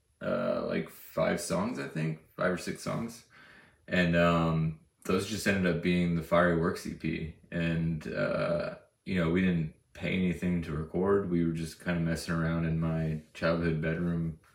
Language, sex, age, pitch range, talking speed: English, male, 20-39, 80-90 Hz, 175 wpm